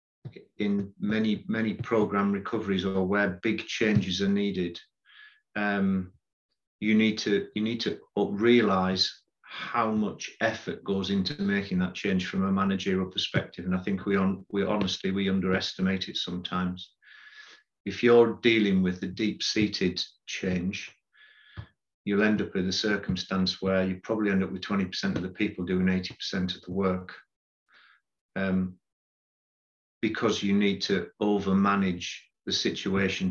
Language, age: English, 40-59